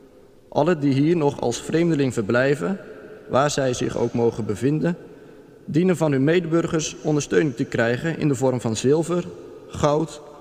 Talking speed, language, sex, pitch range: 150 wpm, Dutch, male, 130-160 Hz